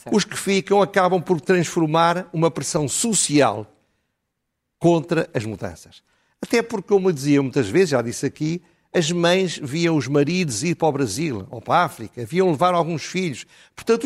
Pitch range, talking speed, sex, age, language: 140-185 Hz, 165 wpm, male, 60-79, Portuguese